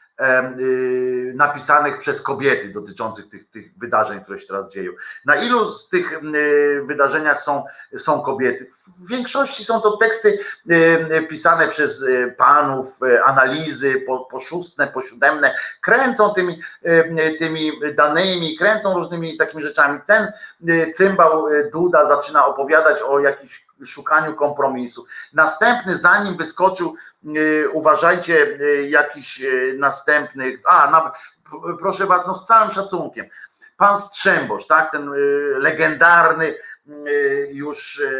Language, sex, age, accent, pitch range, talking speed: Polish, male, 50-69, native, 130-180 Hz, 110 wpm